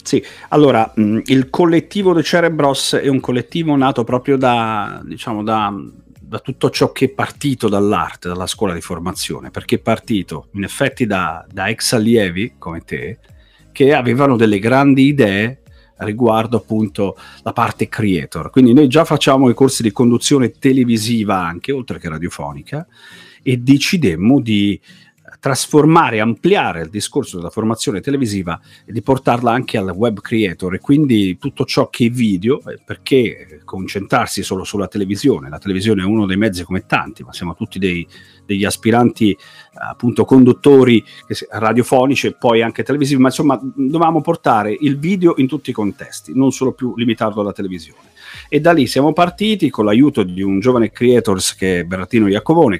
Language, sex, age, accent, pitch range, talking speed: Italian, male, 40-59, native, 100-135 Hz, 155 wpm